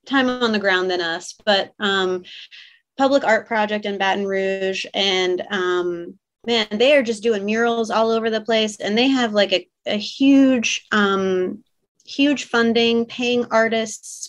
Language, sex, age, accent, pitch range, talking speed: English, female, 30-49, American, 195-235 Hz, 160 wpm